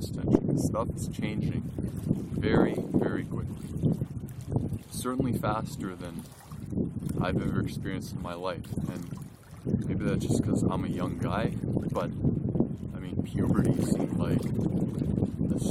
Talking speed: 120 wpm